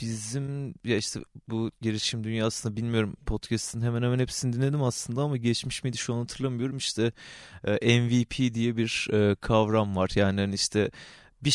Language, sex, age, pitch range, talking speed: Turkish, male, 30-49, 105-125 Hz, 150 wpm